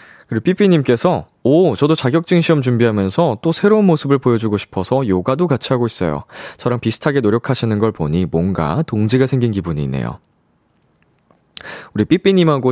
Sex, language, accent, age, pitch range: male, Korean, native, 20-39, 100-150 Hz